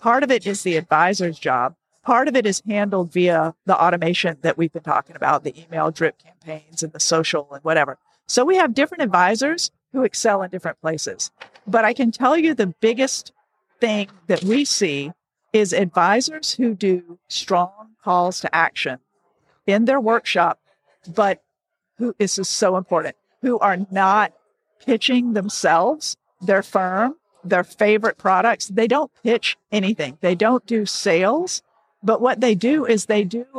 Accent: American